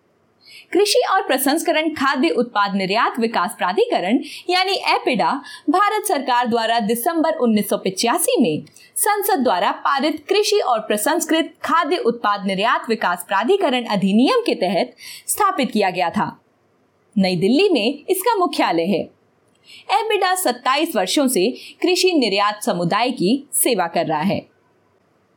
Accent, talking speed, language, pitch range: native, 125 wpm, Hindi, 235-365 Hz